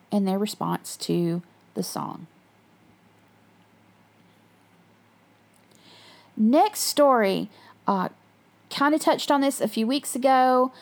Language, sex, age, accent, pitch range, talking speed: English, female, 40-59, American, 200-265 Hz, 95 wpm